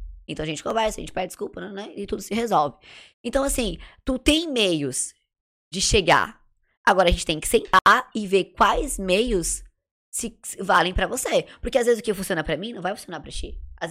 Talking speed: 210 wpm